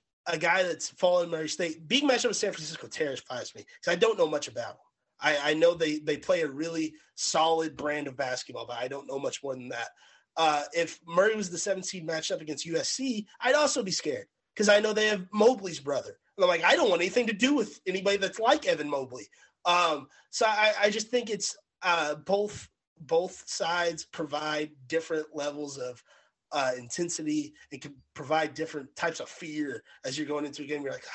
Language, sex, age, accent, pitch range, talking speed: English, male, 30-49, American, 155-210 Hz, 210 wpm